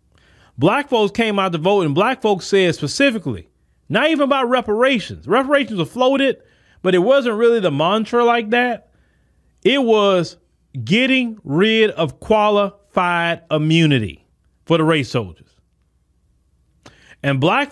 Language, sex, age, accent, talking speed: English, male, 40-59, American, 130 wpm